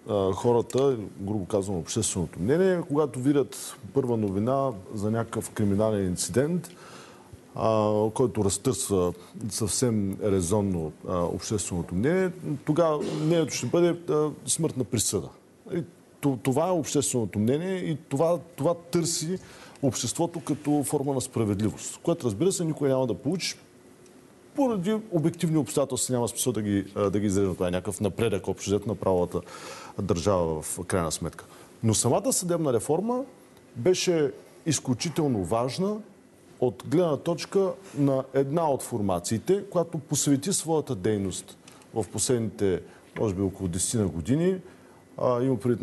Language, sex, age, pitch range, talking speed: Bulgarian, male, 40-59, 105-155 Hz, 125 wpm